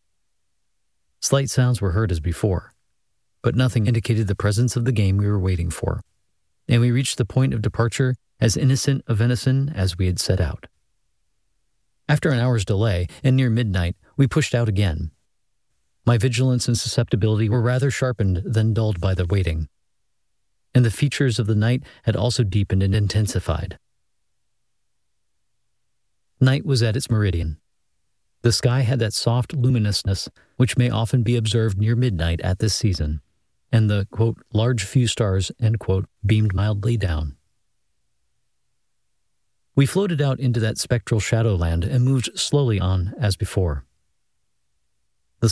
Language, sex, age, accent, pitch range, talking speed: English, male, 40-59, American, 95-125 Hz, 150 wpm